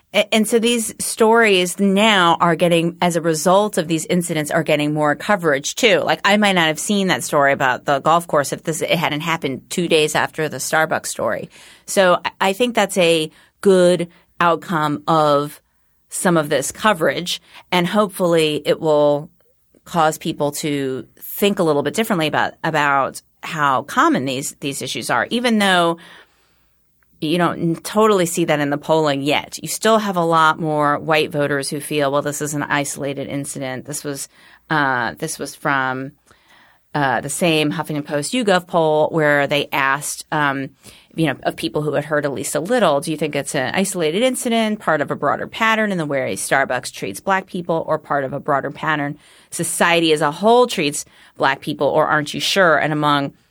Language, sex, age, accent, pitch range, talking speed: English, female, 30-49, American, 145-180 Hz, 190 wpm